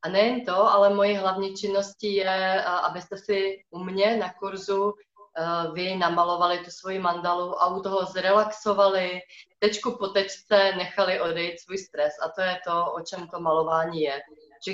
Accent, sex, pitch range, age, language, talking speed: native, female, 175-205 Hz, 30-49, Czech, 165 wpm